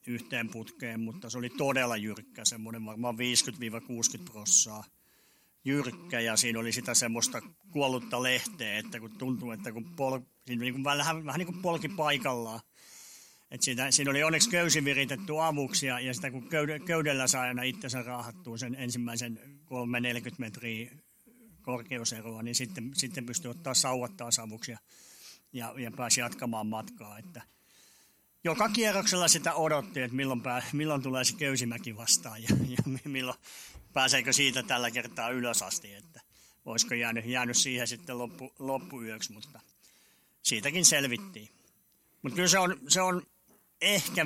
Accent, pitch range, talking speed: native, 120-150 Hz, 140 wpm